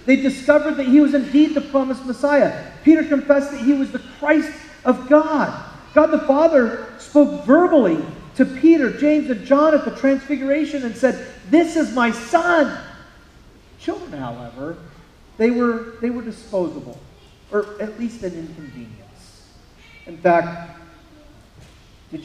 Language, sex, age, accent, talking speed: English, male, 40-59, American, 140 wpm